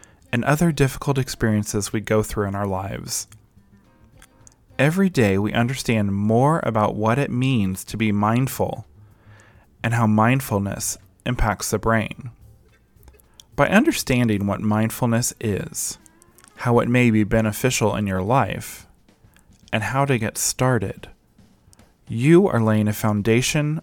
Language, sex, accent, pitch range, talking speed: English, male, American, 105-130 Hz, 130 wpm